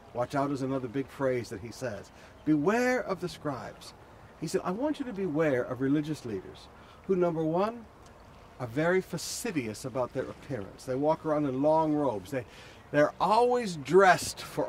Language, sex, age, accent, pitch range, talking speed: English, male, 60-79, American, 130-180 Hz, 170 wpm